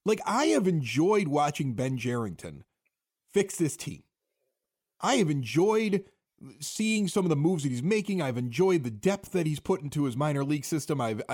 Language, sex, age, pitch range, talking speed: English, male, 30-49, 135-195 Hz, 180 wpm